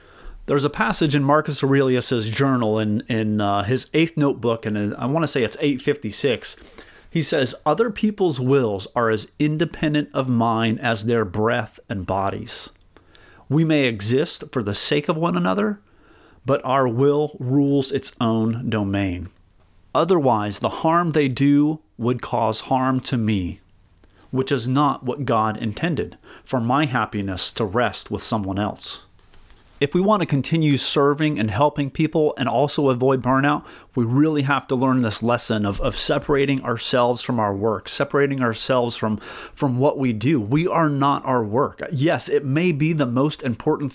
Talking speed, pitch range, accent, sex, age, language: 165 wpm, 110-145 Hz, American, male, 30-49, English